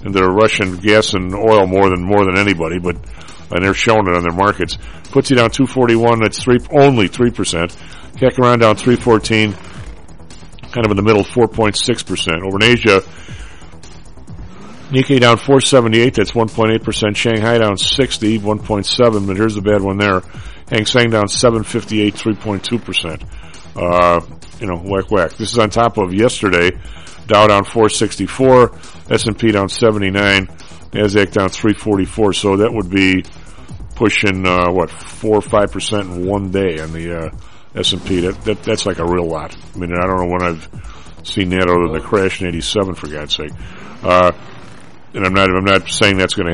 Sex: male